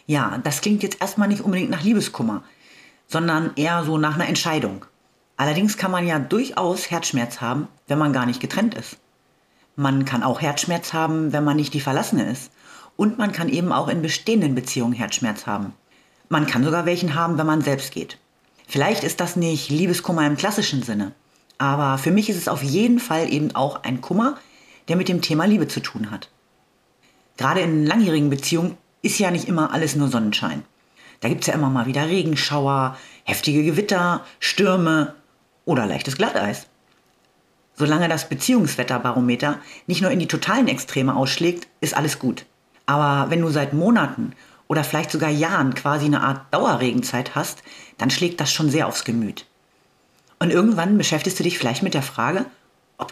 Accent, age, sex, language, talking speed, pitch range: German, 40-59, female, German, 175 wpm, 140-180 Hz